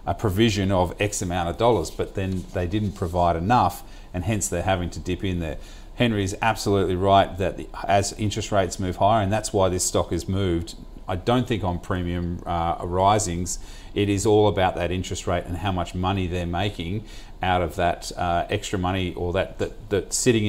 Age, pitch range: 40-59, 90-105 Hz